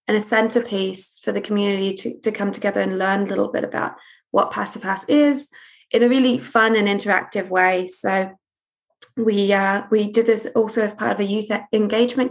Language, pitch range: English, 200-240 Hz